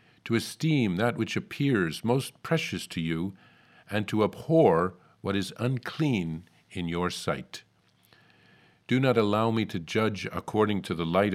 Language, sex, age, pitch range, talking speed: English, male, 50-69, 95-135 Hz, 150 wpm